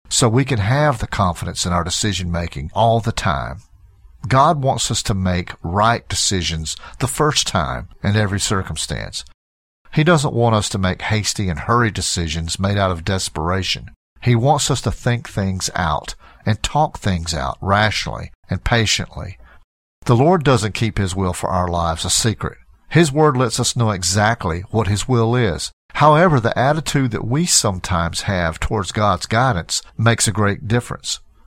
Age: 50-69